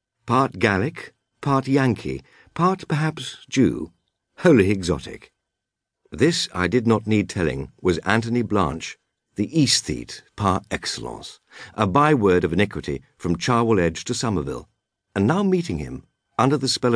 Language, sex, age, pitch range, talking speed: English, male, 50-69, 95-130 Hz, 135 wpm